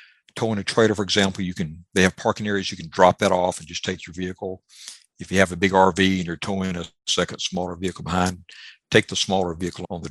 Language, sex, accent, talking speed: English, male, American, 245 wpm